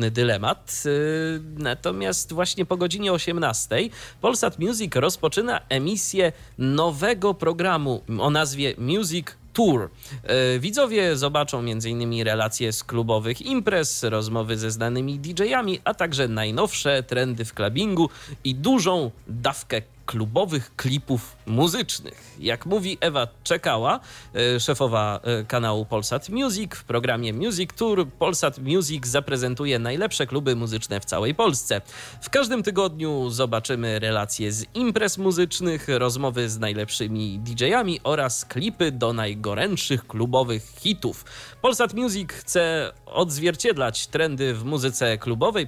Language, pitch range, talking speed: Polish, 115-175 Hz, 115 wpm